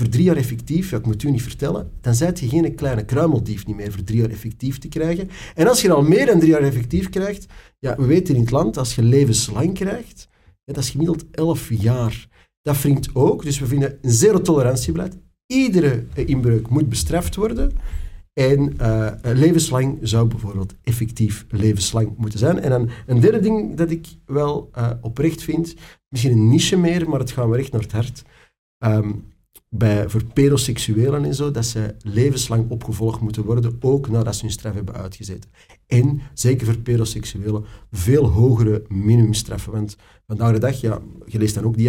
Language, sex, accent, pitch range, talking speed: Dutch, male, Dutch, 110-140 Hz, 190 wpm